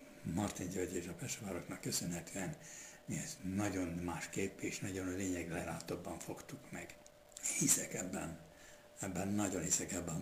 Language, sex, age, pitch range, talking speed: Hungarian, male, 60-79, 90-100 Hz, 140 wpm